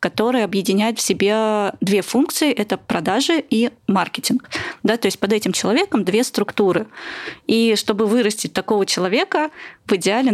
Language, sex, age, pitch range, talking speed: Russian, female, 20-39, 195-240 Hz, 140 wpm